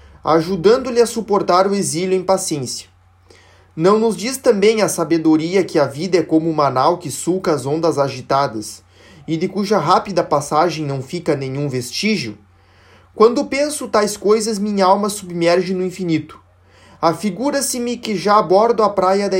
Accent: Brazilian